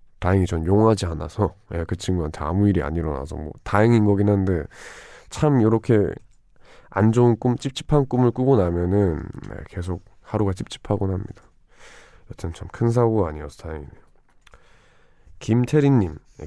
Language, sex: Korean, male